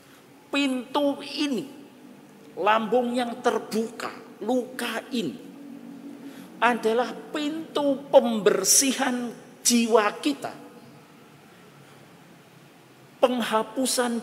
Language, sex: Indonesian, male